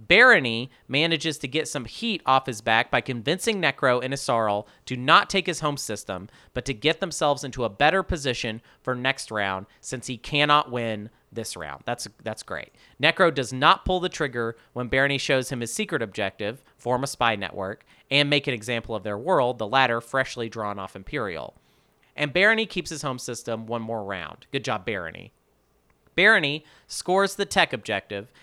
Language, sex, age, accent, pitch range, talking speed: English, male, 40-59, American, 115-150 Hz, 185 wpm